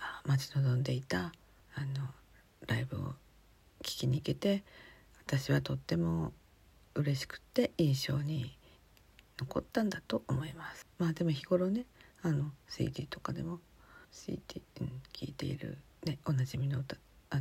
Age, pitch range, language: 50-69, 135-185 Hz, Japanese